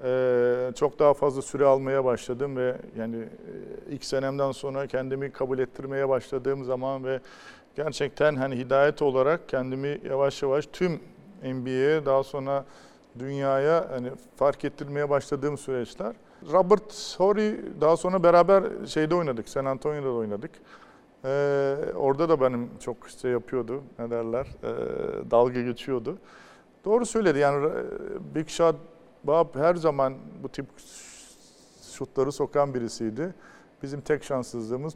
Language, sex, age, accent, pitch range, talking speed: Turkish, male, 50-69, native, 130-155 Hz, 125 wpm